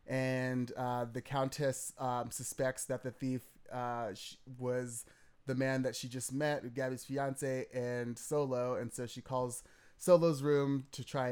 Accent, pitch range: American, 120-135 Hz